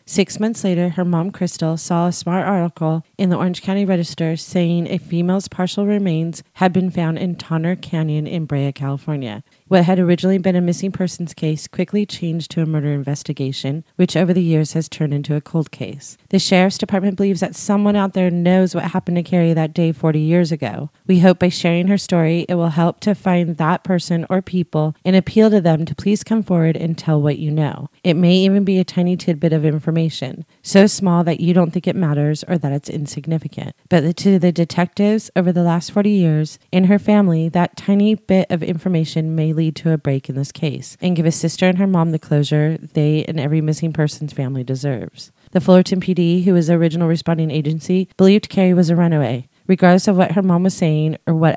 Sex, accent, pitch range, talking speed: female, American, 155-185 Hz, 215 wpm